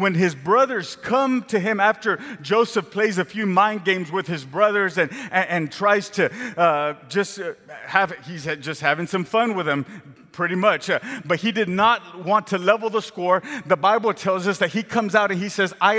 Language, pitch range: English, 185-230 Hz